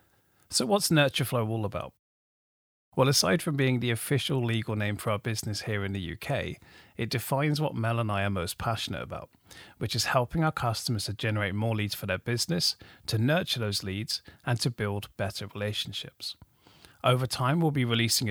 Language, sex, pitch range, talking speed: English, male, 105-135 Hz, 185 wpm